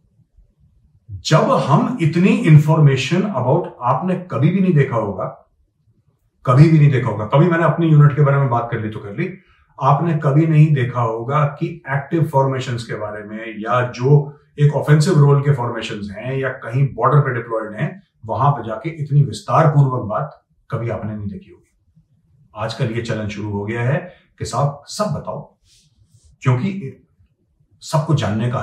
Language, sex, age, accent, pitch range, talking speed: Hindi, male, 40-59, native, 115-155 Hz, 170 wpm